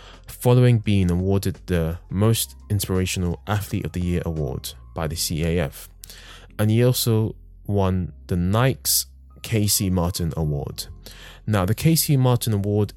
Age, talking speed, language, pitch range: 20-39, 130 wpm, English, 85-105 Hz